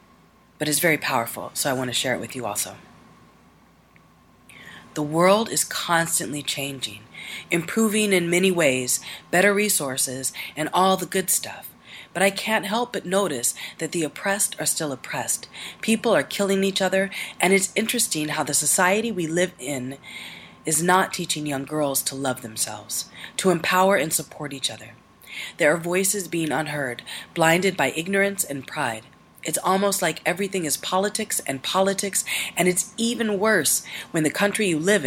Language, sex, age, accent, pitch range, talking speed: English, female, 30-49, American, 140-195 Hz, 165 wpm